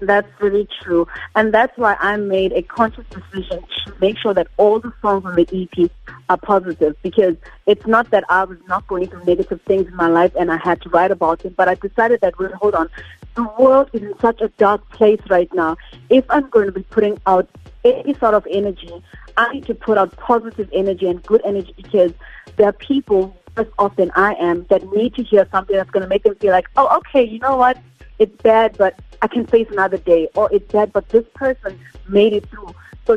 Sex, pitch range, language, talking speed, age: female, 185-220 Hz, English, 225 wpm, 30-49